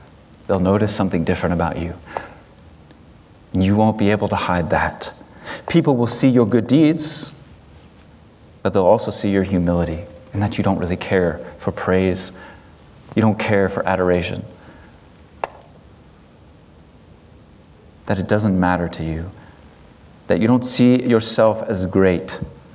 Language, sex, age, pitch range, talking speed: English, male, 30-49, 85-105 Hz, 135 wpm